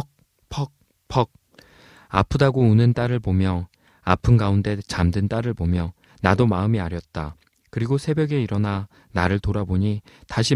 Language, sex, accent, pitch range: Korean, male, native, 95-135 Hz